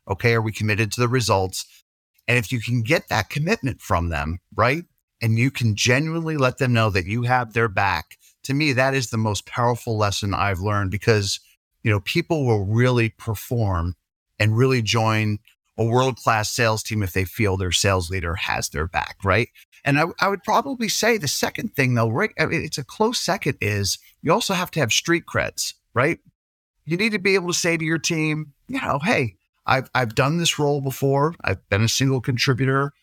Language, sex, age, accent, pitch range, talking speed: English, male, 30-49, American, 110-145 Hz, 205 wpm